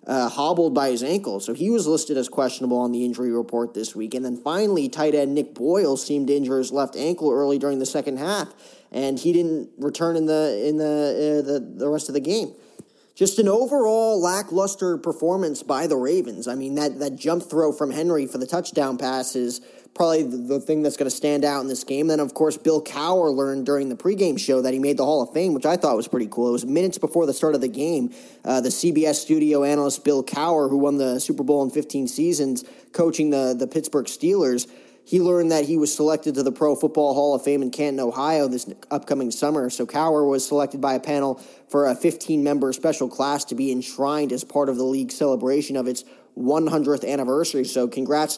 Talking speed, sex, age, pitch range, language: 225 wpm, male, 20-39, 130-160 Hz, English